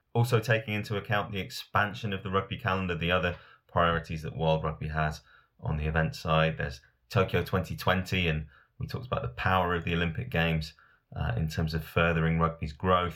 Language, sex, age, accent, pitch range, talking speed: English, male, 30-49, British, 80-100 Hz, 185 wpm